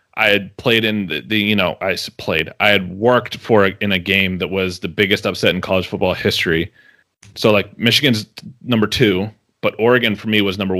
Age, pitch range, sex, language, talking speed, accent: 30-49, 95-105 Hz, male, English, 205 wpm, American